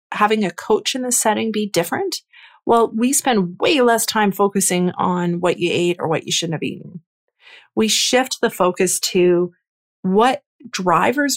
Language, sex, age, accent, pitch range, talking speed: English, female, 30-49, American, 180-225 Hz, 170 wpm